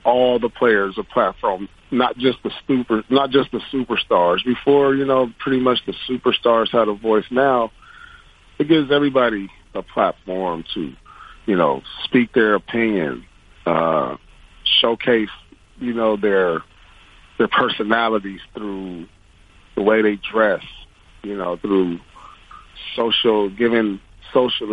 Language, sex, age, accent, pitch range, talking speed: English, male, 40-59, American, 95-120 Hz, 130 wpm